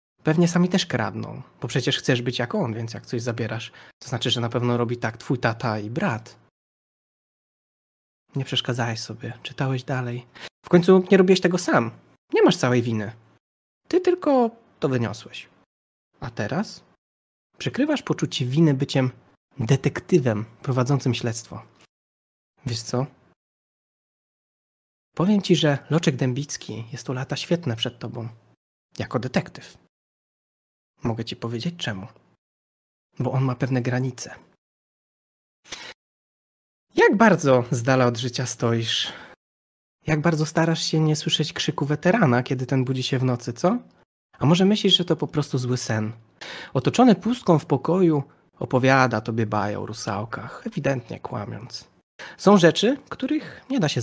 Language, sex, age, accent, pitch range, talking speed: Polish, male, 20-39, native, 115-160 Hz, 140 wpm